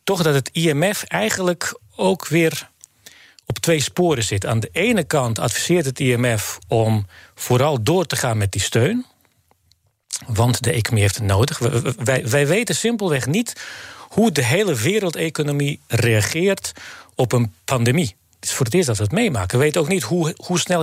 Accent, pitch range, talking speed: Dutch, 115-160 Hz, 180 wpm